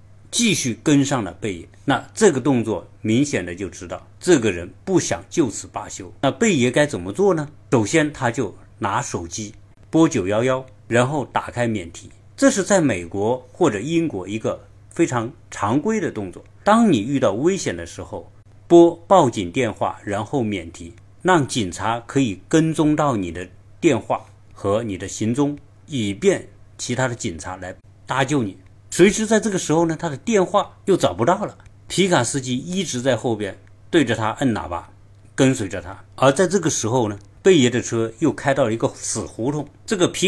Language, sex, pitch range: Chinese, male, 100-145 Hz